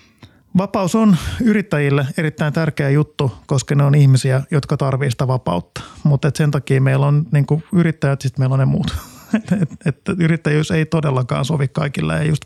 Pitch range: 135-160 Hz